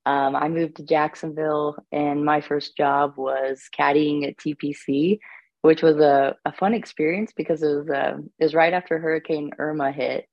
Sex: female